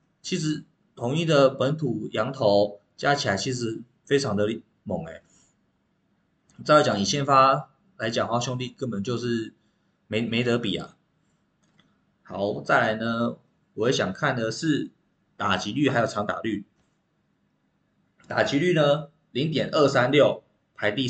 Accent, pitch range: native, 115-150 Hz